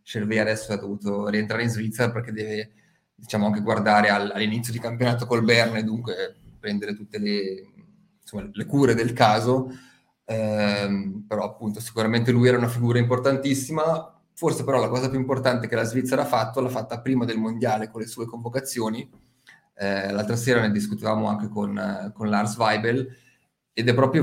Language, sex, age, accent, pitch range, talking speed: Italian, male, 20-39, native, 105-120 Hz, 170 wpm